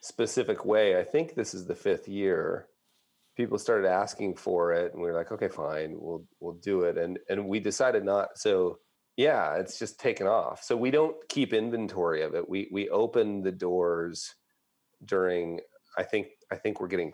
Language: English